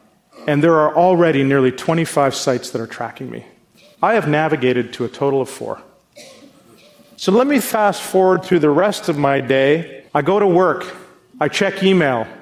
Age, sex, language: 40-59, male, English